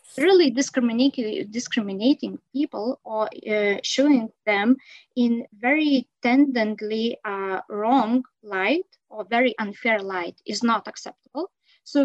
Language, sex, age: English, female, 20-39